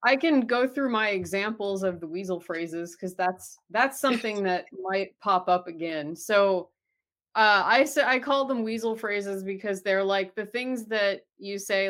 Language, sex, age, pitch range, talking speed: English, female, 30-49, 180-225 Hz, 180 wpm